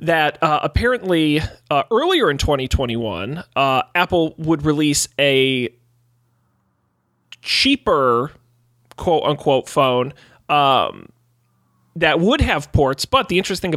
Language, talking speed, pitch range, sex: English, 105 wpm, 125-155 Hz, male